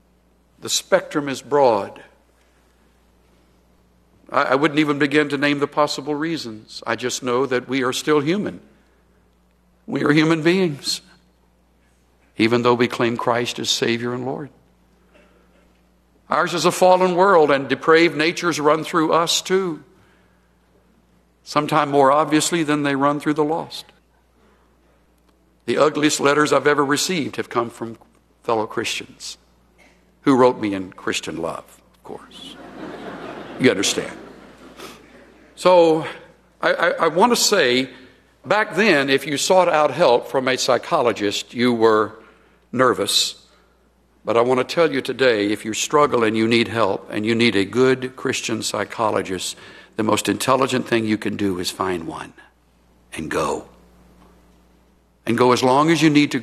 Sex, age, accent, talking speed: male, 60-79, American, 145 wpm